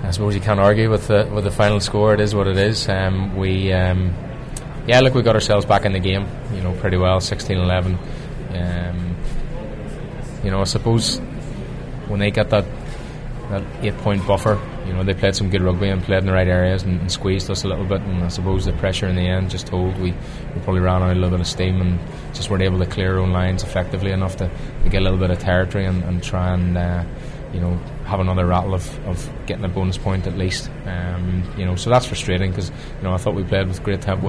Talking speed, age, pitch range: 245 wpm, 20-39, 90-100 Hz